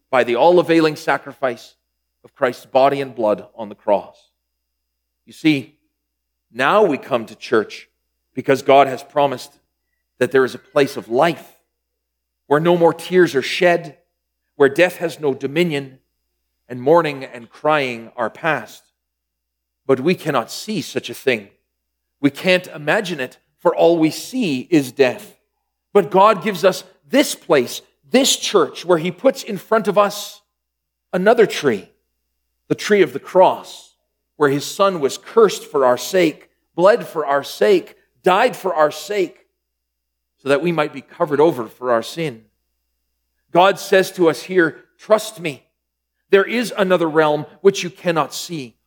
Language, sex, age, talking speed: English, male, 40-59, 155 wpm